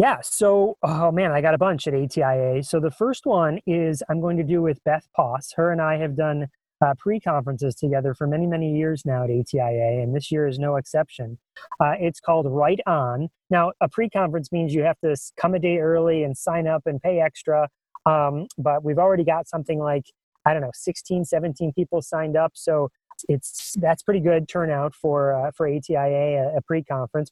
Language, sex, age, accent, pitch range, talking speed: English, male, 30-49, American, 145-180 Hz, 200 wpm